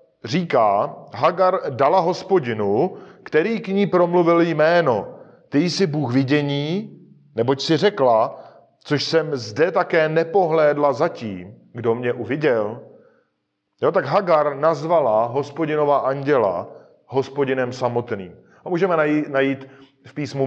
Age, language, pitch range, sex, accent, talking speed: 40-59, Czech, 130-170 Hz, male, native, 115 wpm